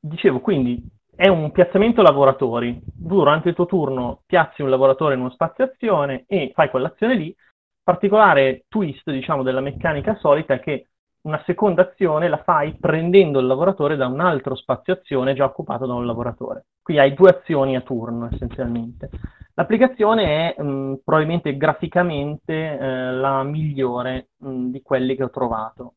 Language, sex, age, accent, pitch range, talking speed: Italian, male, 30-49, native, 130-175 Hz, 150 wpm